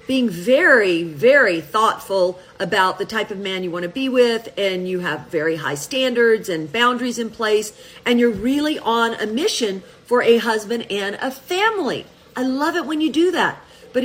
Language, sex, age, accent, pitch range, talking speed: English, female, 40-59, American, 210-275 Hz, 190 wpm